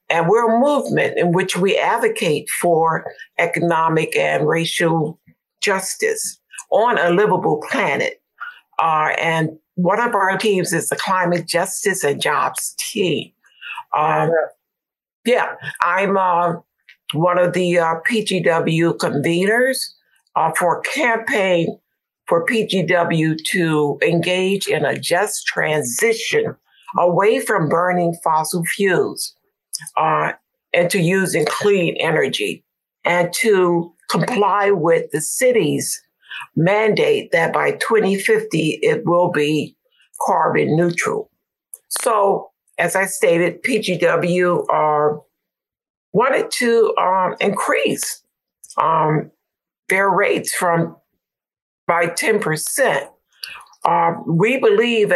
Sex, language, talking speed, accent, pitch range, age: female, English, 110 wpm, American, 165-220 Hz, 60-79